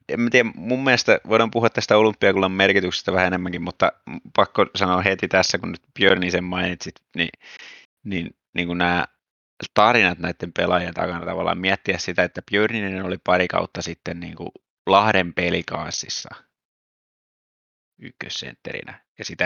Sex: male